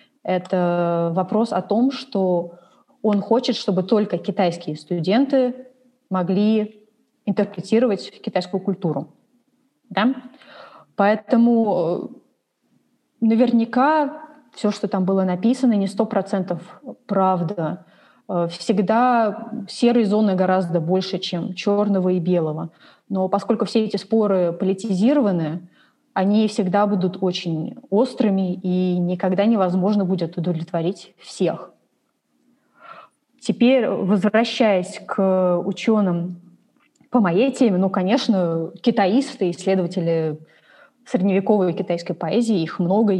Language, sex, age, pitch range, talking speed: Russian, female, 20-39, 180-225 Hz, 95 wpm